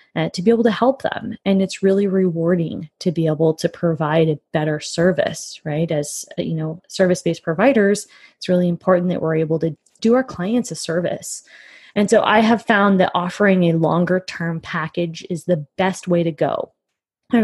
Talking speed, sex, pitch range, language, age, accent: 190 wpm, female, 170-215 Hz, English, 20-39, American